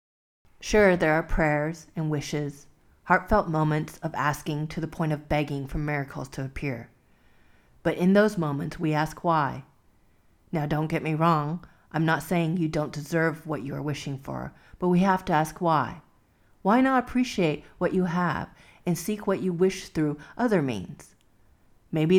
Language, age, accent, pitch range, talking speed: English, 40-59, American, 150-185 Hz, 170 wpm